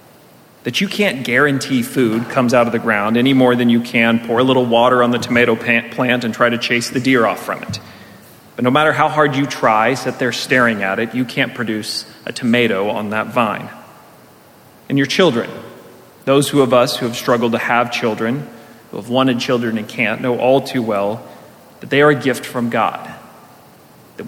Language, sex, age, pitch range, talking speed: English, male, 30-49, 115-135 Hz, 205 wpm